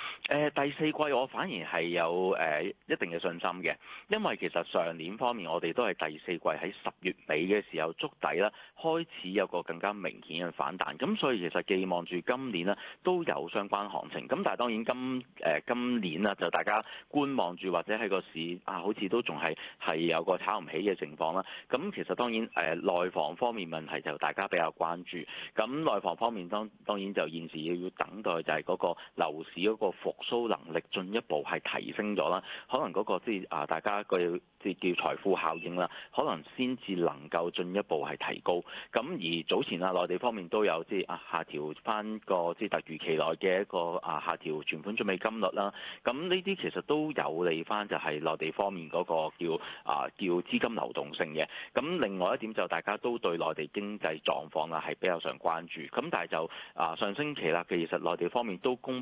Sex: male